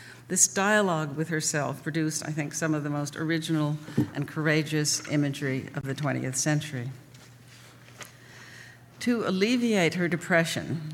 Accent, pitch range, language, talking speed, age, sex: American, 145-165 Hz, English, 125 wpm, 60-79, female